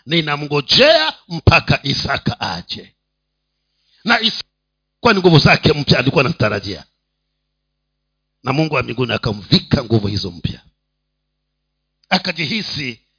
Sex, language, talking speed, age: male, Swahili, 90 wpm, 50-69